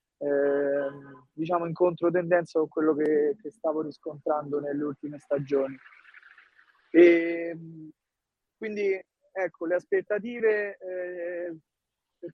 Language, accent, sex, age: Italian, native, male, 30-49